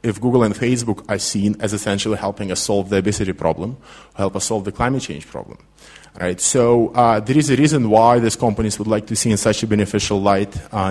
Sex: male